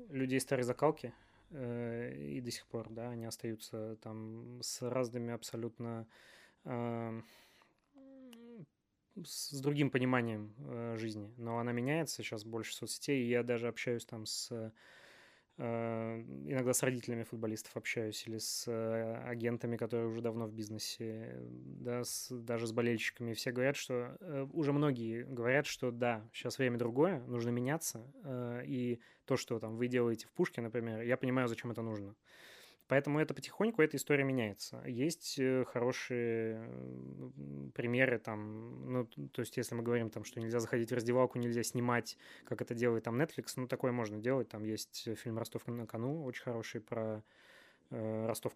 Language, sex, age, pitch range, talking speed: Russian, male, 20-39, 115-125 Hz, 150 wpm